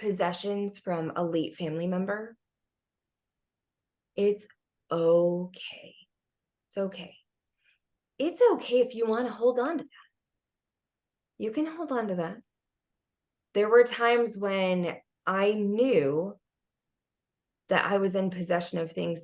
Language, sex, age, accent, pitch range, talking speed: English, female, 20-39, American, 160-205 Hz, 120 wpm